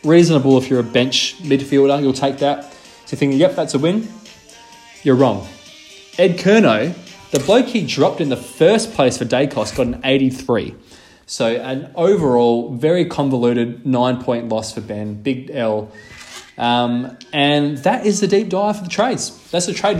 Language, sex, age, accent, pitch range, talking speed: English, male, 20-39, Australian, 130-175 Hz, 170 wpm